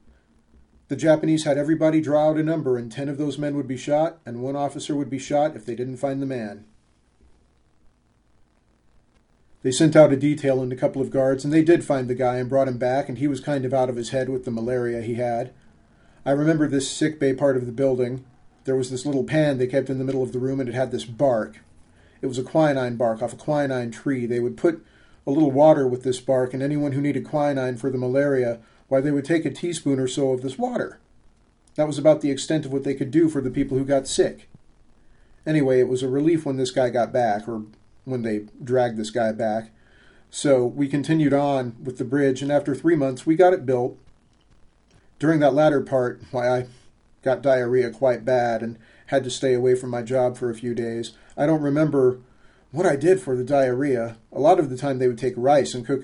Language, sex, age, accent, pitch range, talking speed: English, male, 40-59, American, 125-145 Hz, 230 wpm